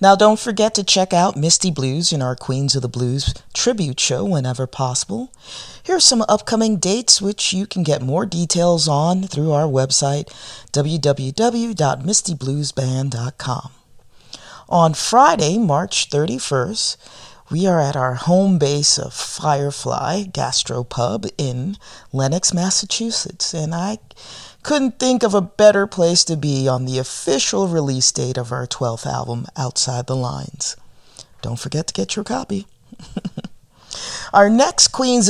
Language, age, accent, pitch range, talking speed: English, 40-59, American, 135-200 Hz, 140 wpm